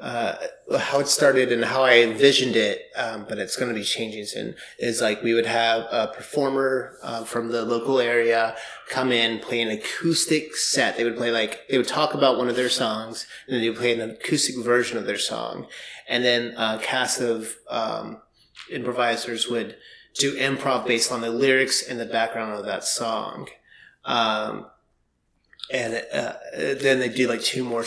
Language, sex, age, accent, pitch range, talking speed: English, male, 30-49, American, 115-130 Hz, 185 wpm